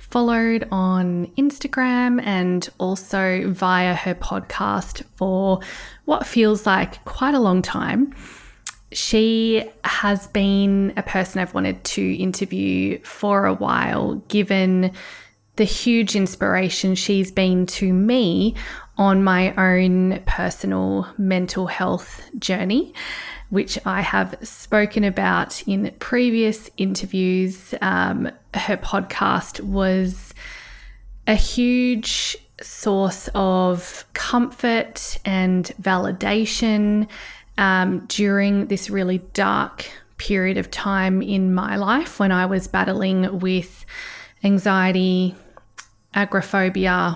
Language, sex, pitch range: English, female, 185-215 Hz